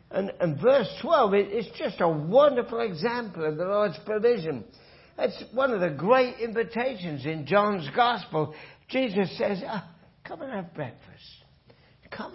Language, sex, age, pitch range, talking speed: English, male, 60-79, 185-255 Hz, 140 wpm